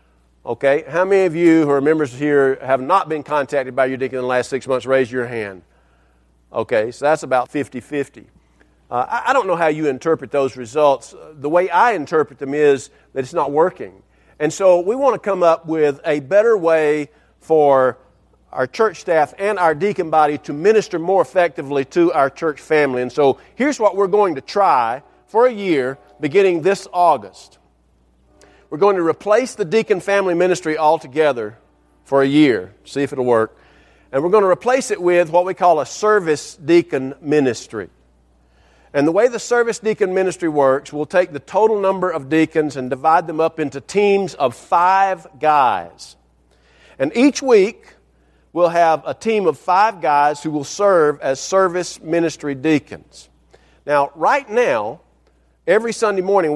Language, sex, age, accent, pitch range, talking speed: English, male, 50-69, American, 130-185 Hz, 175 wpm